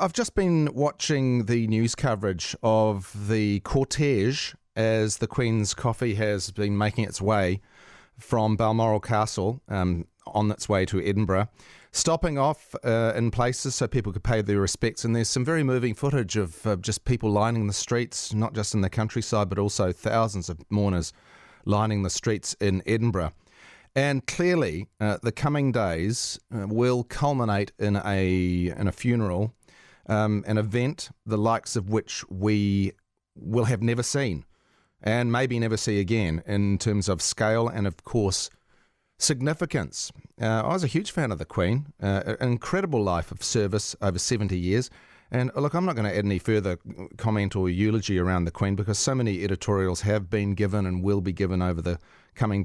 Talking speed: 175 wpm